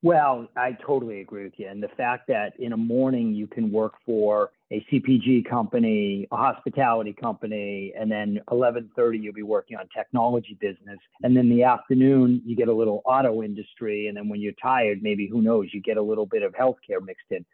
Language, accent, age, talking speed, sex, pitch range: English, American, 40-59, 200 wpm, male, 115-155 Hz